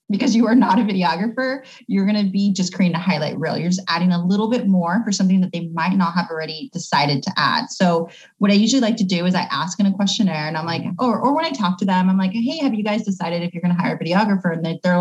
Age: 20-39